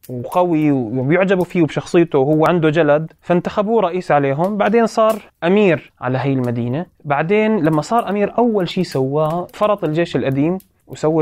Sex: male